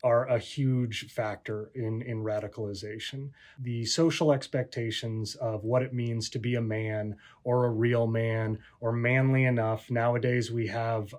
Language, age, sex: English, 30-49, male